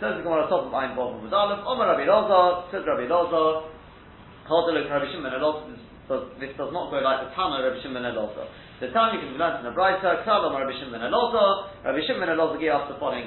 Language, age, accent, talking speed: English, 40-59, British, 120 wpm